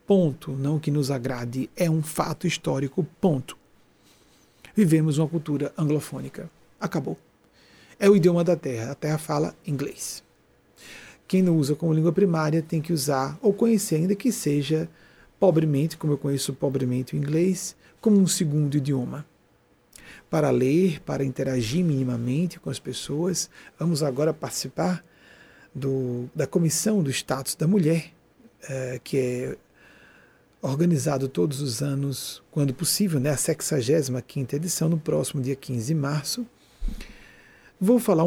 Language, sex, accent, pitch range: Portuguese, male, Brazilian, 135-170 Hz